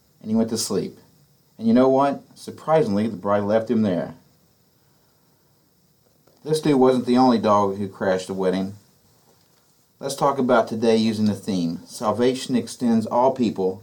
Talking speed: 155 wpm